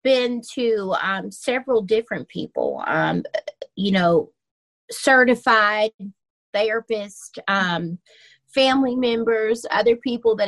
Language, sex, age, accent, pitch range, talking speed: English, female, 30-49, American, 180-220 Hz, 90 wpm